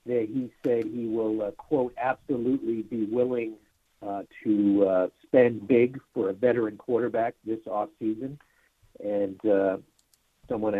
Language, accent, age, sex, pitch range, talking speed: English, American, 50-69, male, 110-145 Hz, 135 wpm